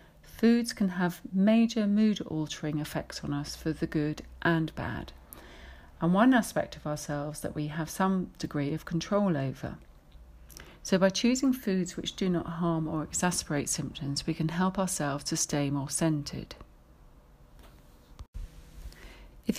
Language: English